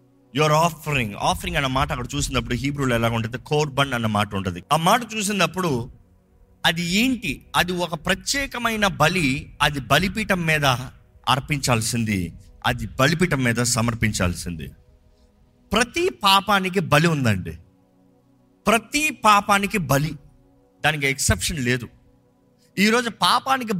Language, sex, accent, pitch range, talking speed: Telugu, male, native, 120-195 Hz, 110 wpm